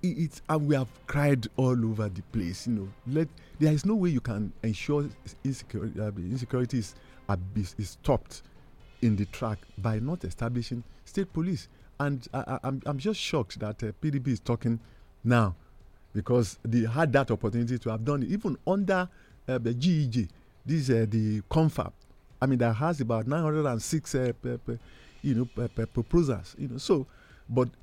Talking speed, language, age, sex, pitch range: 170 wpm, English, 50-69, male, 110-150 Hz